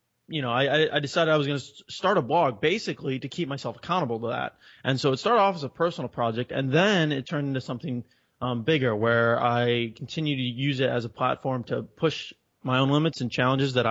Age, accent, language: 20-39, American, English